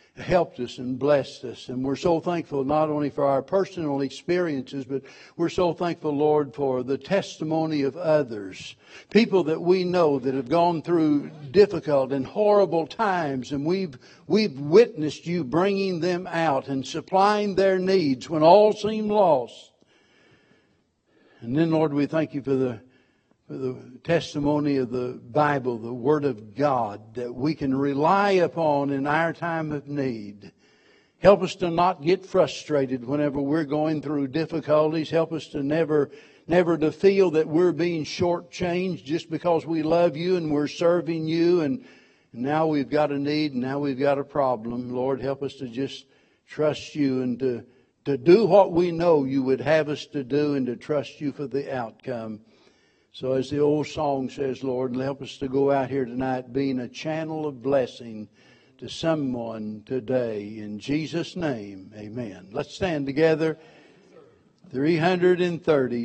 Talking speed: 165 wpm